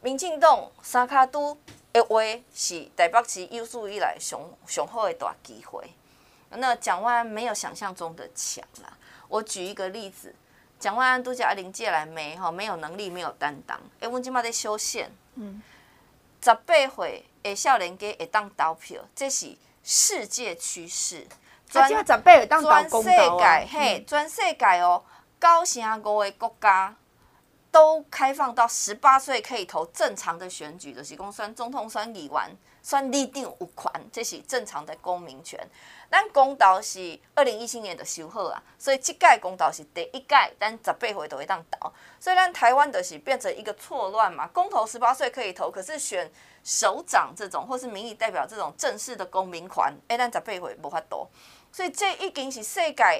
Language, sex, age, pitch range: Chinese, female, 30-49, 200-275 Hz